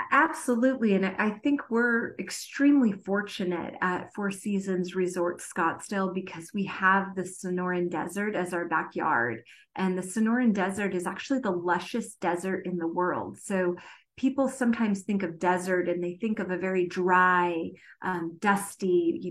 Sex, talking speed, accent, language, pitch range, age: female, 150 wpm, American, Spanish, 180-205 Hz, 30-49